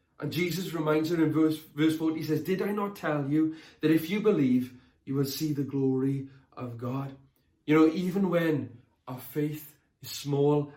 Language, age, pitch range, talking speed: English, 30-49, 140-180 Hz, 190 wpm